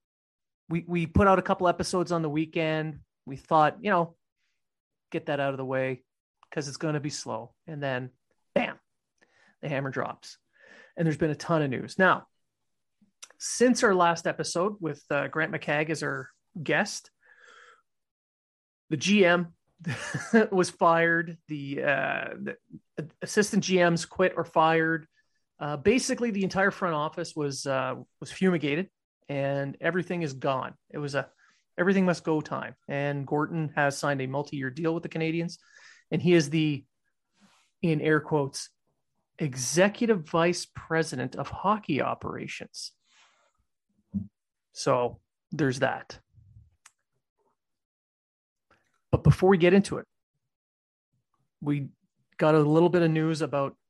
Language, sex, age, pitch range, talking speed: English, male, 30-49, 140-175 Hz, 140 wpm